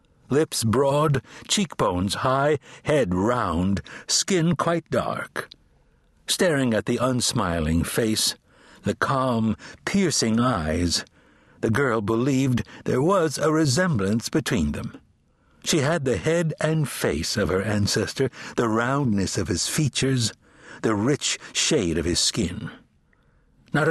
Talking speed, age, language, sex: 120 wpm, 60-79, English, male